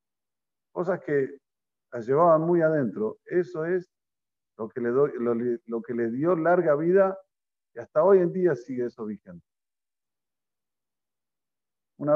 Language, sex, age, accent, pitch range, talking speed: Spanish, male, 50-69, Argentinian, 130-180 Hz, 125 wpm